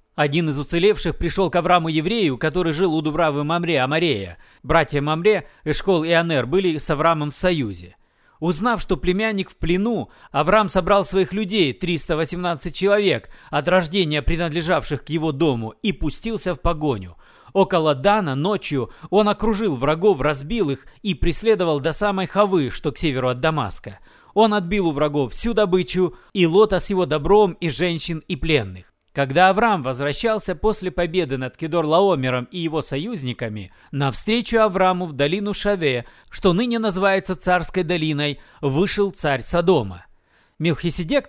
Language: Russian